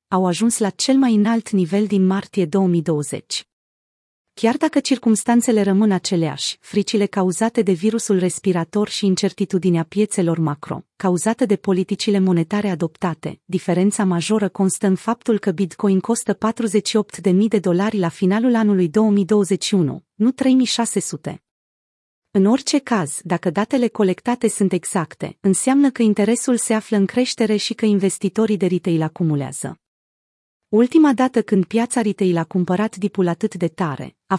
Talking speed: 140 wpm